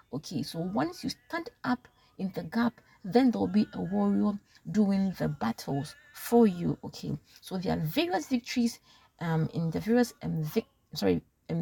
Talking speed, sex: 175 wpm, female